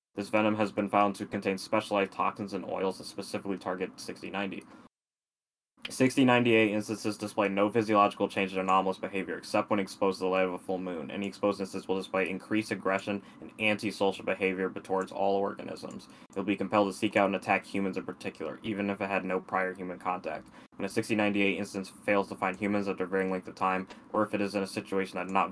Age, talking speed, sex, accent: 20-39, 215 wpm, male, American